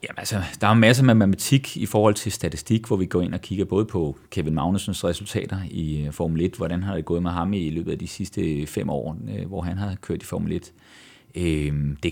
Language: Danish